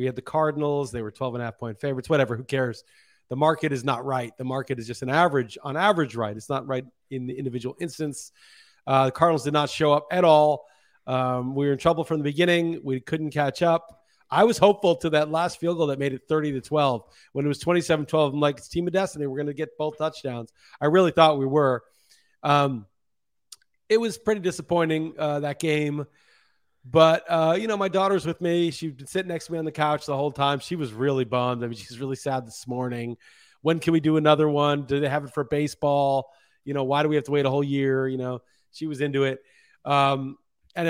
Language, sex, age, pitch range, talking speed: English, male, 40-59, 135-170 Hz, 235 wpm